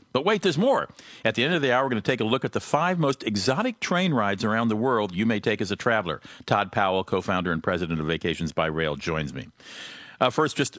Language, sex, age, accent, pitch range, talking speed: English, male, 50-69, American, 95-125 Hz, 255 wpm